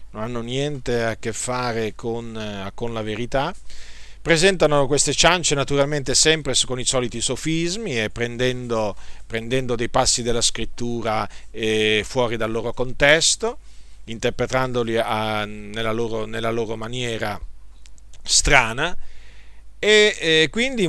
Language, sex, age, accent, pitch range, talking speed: Italian, male, 40-59, native, 110-150 Hz, 120 wpm